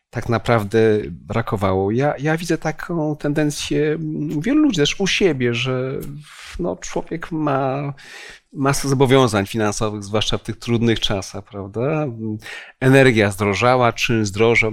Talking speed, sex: 120 wpm, male